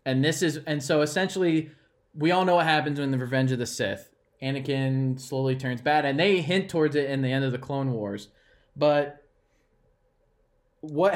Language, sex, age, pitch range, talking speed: English, male, 20-39, 130-160 Hz, 190 wpm